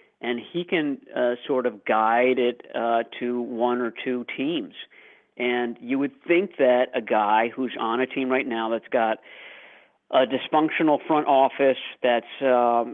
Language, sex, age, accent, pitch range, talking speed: English, male, 50-69, American, 120-150 Hz, 160 wpm